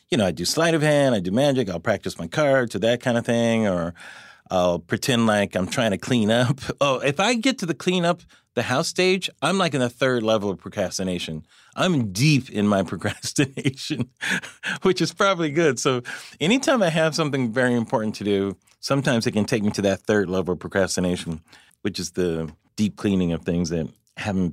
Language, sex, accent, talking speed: English, male, American, 210 wpm